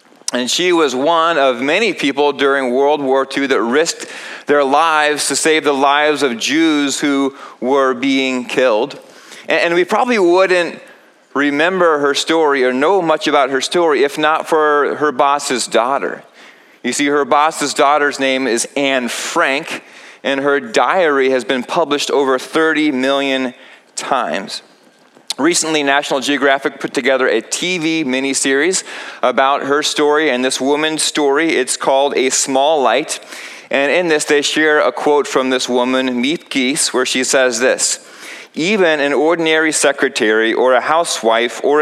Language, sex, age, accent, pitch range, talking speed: English, male, 30-49, American, 130-155 Hz, 150 wpm